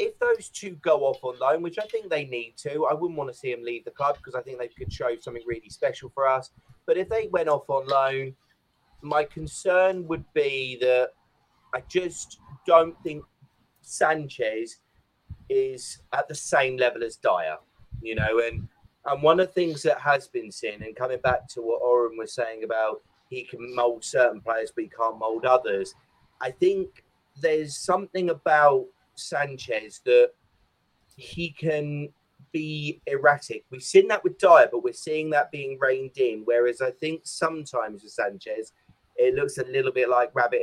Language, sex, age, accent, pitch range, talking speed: English, male, 30-49, British, 125-185 Hz, 185 wpm